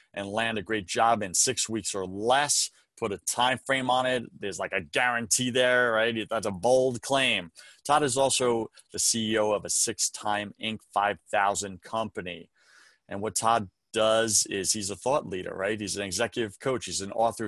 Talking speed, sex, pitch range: 185 wpm, male, 105-120 Hz